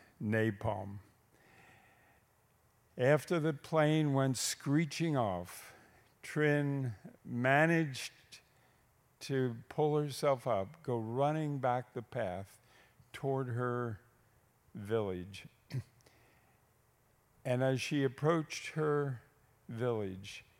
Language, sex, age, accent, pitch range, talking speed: English, male, 50-69, American, 110-140 Hz, 80 wpm